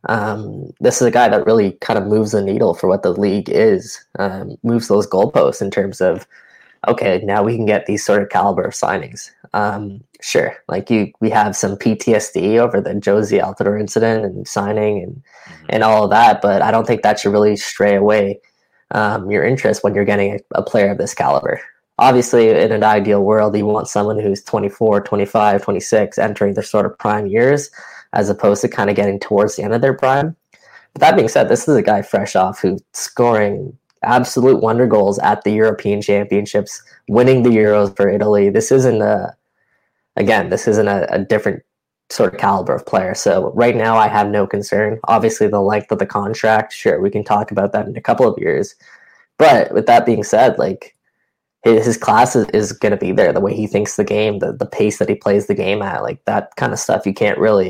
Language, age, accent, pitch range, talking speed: English, 10-29, American, 100-115 Hz, 215 wpm